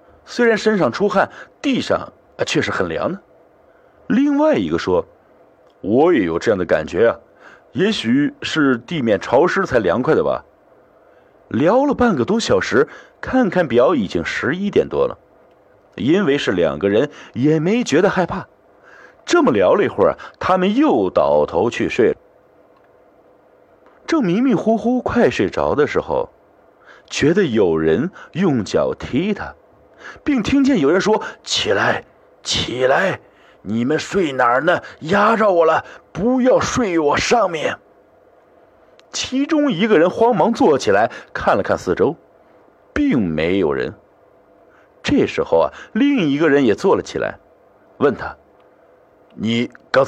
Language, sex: Chinese, male